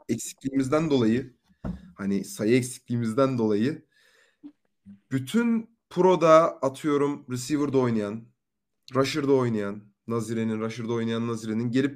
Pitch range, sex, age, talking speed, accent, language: 125-155 Hz, male, 30-49, 90 wpm, native, Turkish